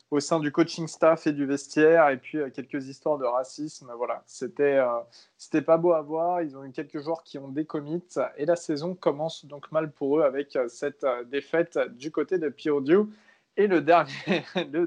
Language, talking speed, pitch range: French, 210 wpm, 135-165 Hz